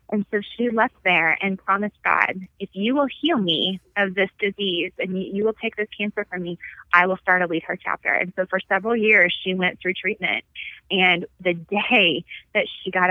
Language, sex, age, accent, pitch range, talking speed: English, female, 20-39, American, 175-200 Hz, 210 wpm